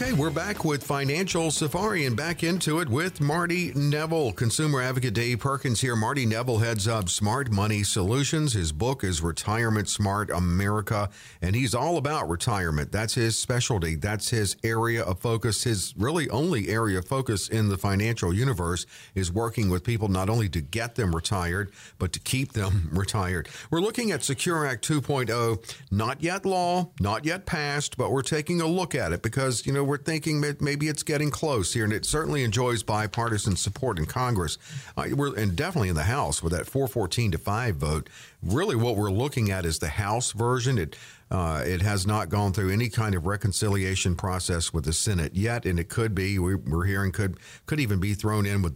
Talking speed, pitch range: 195 wpm, 100-135 Hz